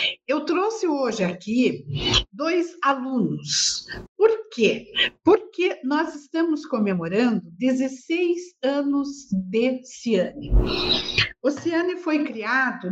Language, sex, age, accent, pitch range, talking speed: Portuguese, female, 50-69, Brazilian, 230-310 Hz, 95 wpm